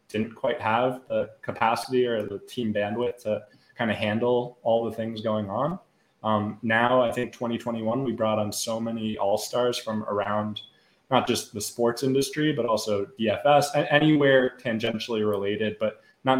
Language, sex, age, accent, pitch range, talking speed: English, male, 20-39, American, 110-130 Hz, 160 wpm